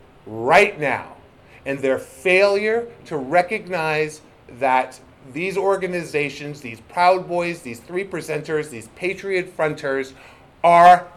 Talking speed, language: 105 wpm, English